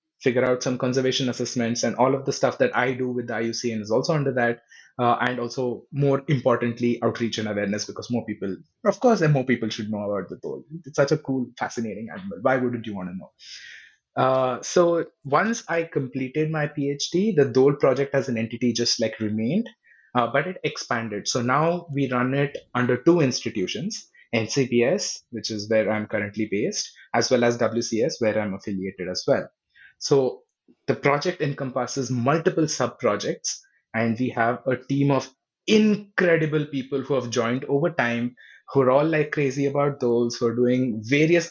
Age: 20-39